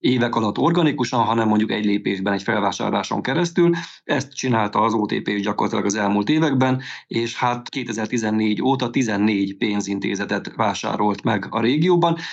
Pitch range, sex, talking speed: 105-130 Hz, male, 135 wpm